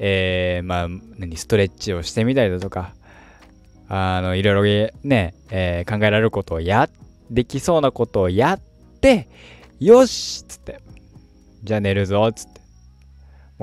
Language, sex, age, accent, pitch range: Japanese, male, 20-39, native, 85-130 Hz